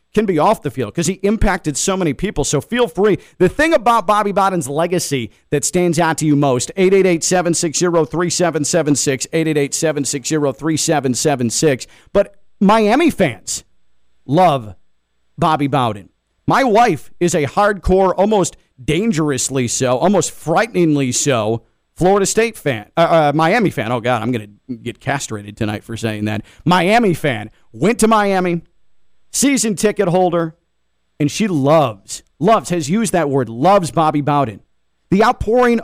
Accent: American